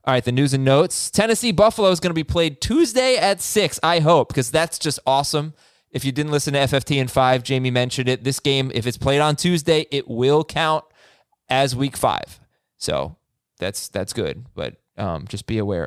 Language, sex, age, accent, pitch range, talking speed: English, male, 20-39, American, 120-165 Hz, 210 wpm